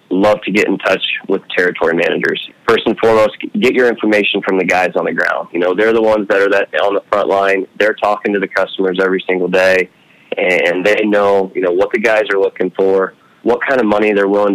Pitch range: 95-110 Hz